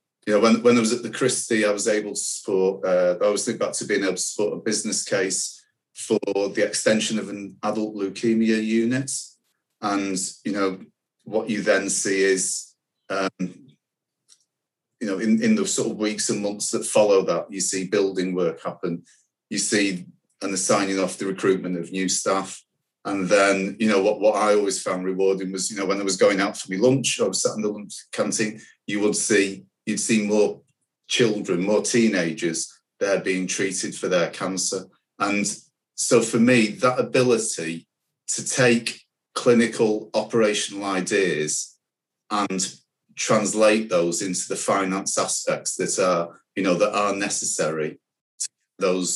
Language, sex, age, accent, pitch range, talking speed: English, male, 30-49, British, 95-110 Hz, 175 wpm